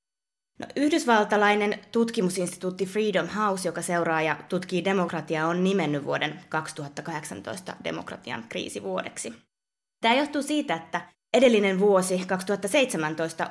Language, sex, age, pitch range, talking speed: Finnish, female, 20-39, 165-200 Hz, 100 wpm